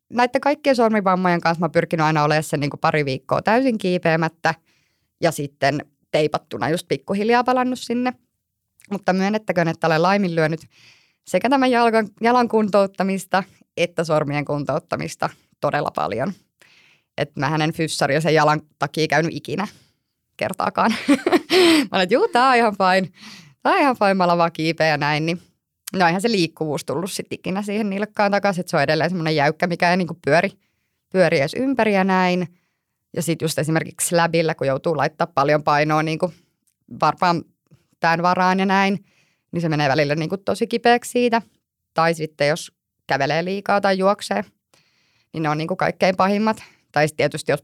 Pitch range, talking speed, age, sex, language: 155-200 Hz, 155 wpm, 20-39, female, Finnish